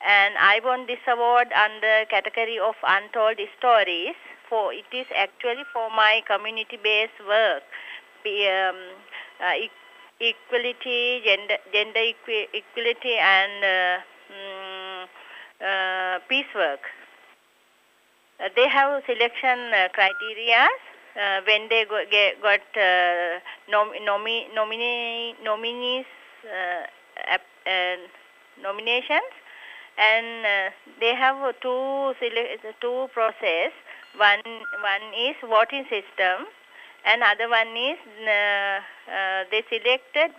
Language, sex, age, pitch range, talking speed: English, female, 50-69, 200-250 Hz, 110 wpm